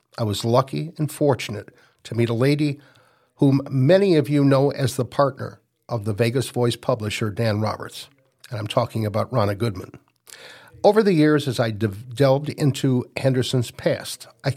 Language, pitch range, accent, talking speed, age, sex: English, 115-145 Hz, American, 165 wpm, 60-79, male